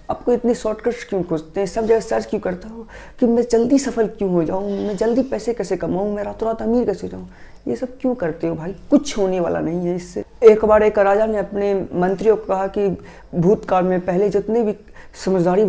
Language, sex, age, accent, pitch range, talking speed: Hindi, female, 20-39, native, 175-205 Hz, 220 wpm